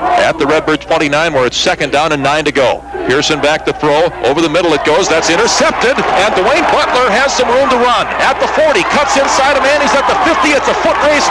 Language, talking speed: English, 245 wpm